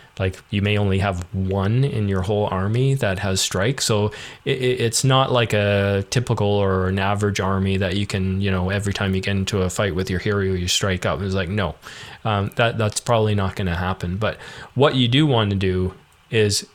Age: 20-39